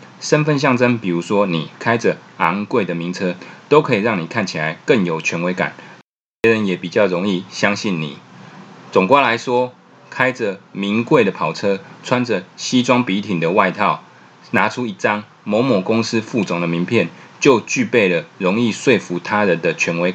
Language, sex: Chinese, male